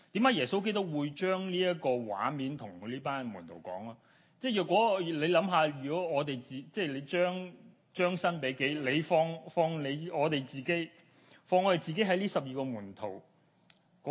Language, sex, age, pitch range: Chinese, male, 30-49, 130-180 Hz